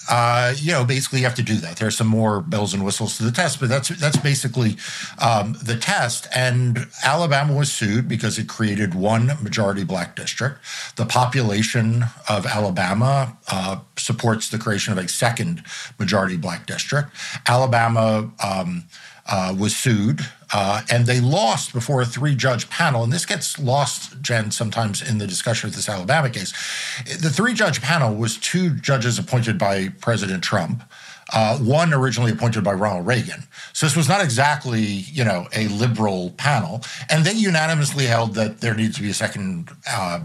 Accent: American